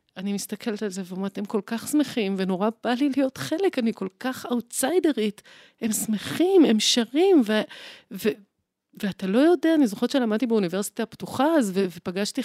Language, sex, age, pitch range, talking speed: Hebrew, female, 30-49, 205-280 Hz, 175 wpm